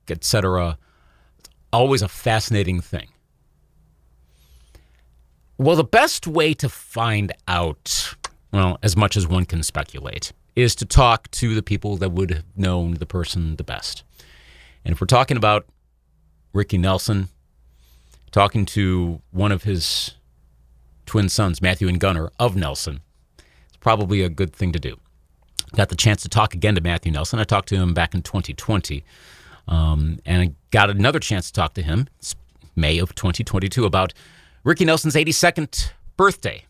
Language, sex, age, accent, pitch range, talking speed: English, male, 40-59, American, 80-125 Hz, 155 wpm